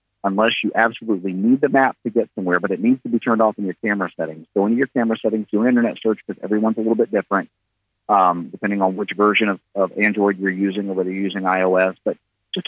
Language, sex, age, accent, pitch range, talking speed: English, male, 40-59, American, 100-120 Hz, 245 wpm